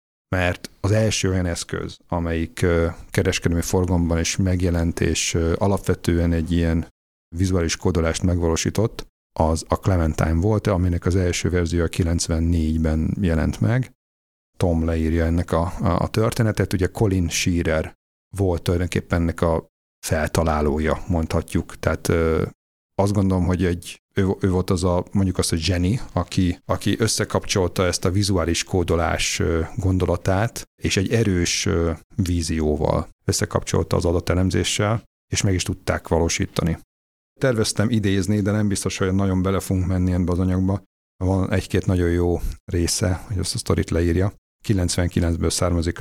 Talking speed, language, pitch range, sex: 135 wpm, Hungarian, 85-95 Hz, male